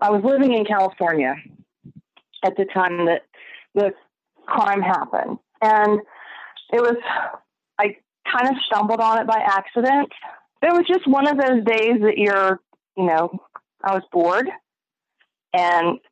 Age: 30-49